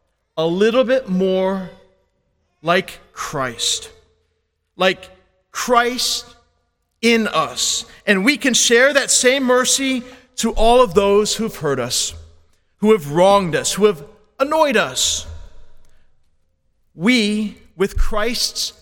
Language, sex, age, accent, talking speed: English, male, 40-59, American, 110 wpm